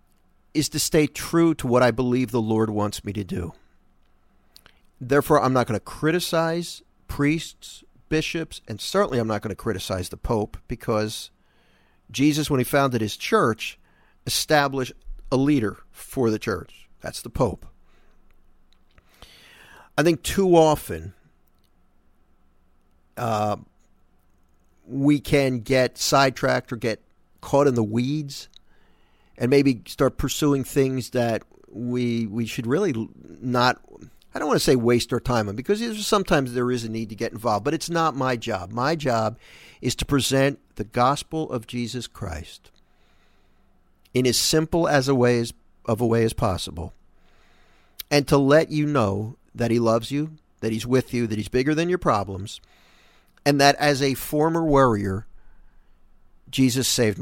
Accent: American